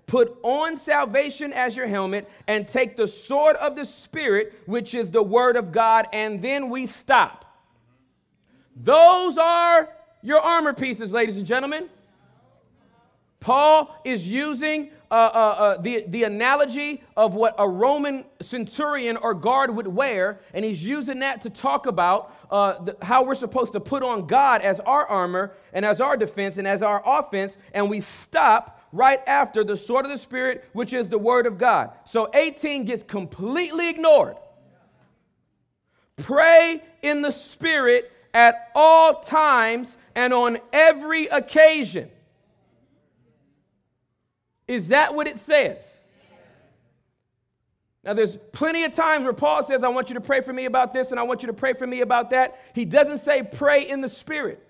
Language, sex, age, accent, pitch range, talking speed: English, male, 40-59, American, 210-290 Hz, 160 wpm